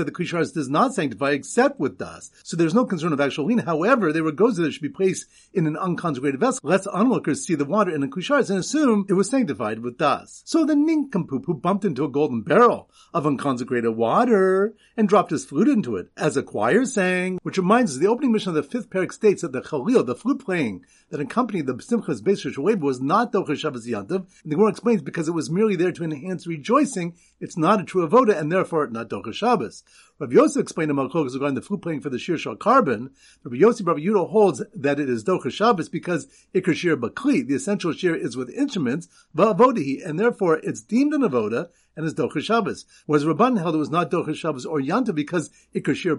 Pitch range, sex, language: 155-215 Hz, male, English